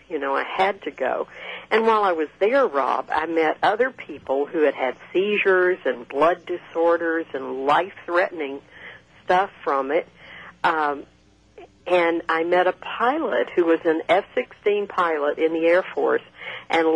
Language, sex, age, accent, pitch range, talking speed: English, female, 60-79, American, 150-225 Hz, 155 wpm